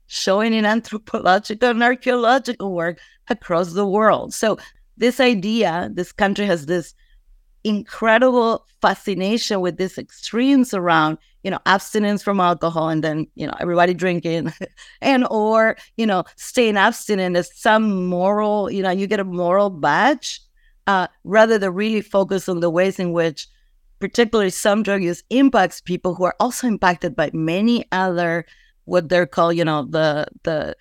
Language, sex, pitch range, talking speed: English, female, 175-220 Hz, 155 wpm